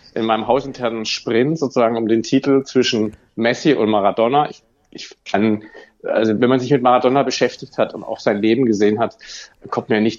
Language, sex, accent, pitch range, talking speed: German, male, German, 110-145 Hz, 190 wpm